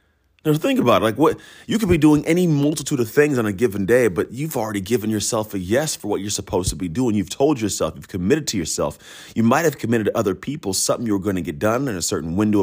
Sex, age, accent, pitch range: male, 30-49, American, 100-130 Hz